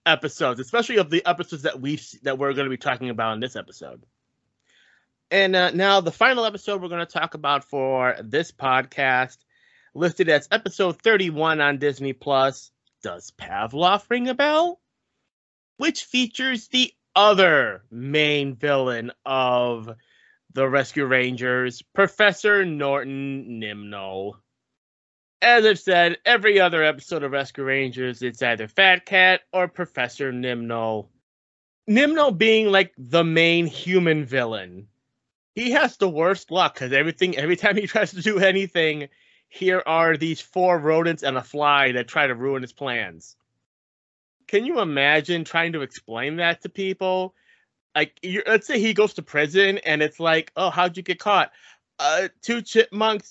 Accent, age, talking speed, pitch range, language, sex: American, 30-49, 150 wpm, 130-195 Hz, English, male